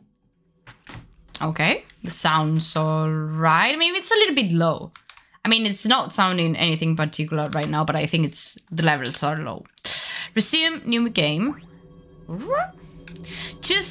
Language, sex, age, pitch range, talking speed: Italian, female, 20-39, 160-230 Hz, 135 wpm